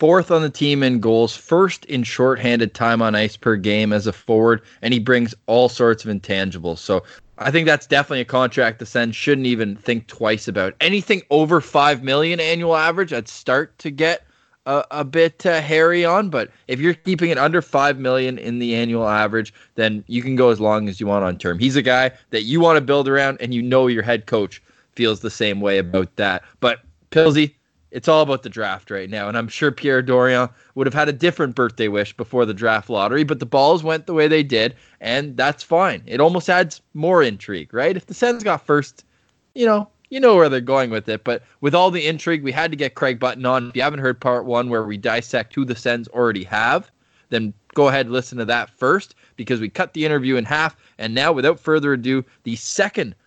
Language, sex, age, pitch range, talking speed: English, male, 20-39, 115-150 Hz, 230 wpm